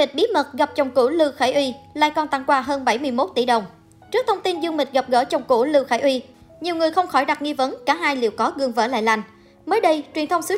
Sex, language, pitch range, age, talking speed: male, Vietnamese, 255-325 Hz, 20-39, 280 wpm